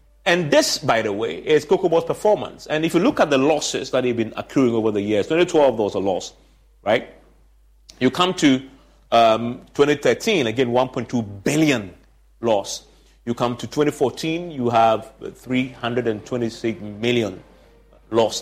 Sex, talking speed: male, 155 wpm